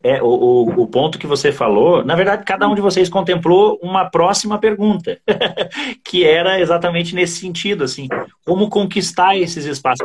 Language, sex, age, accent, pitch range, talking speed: Portuguese, male, 30-49, Brazilian, 145-205 Hz, 160 wpm